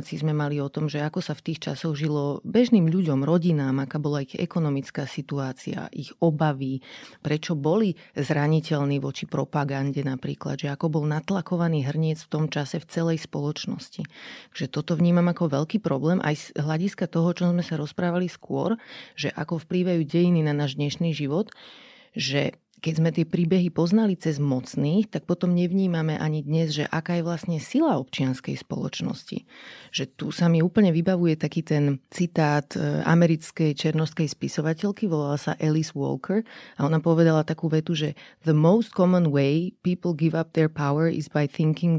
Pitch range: 145-175 Hz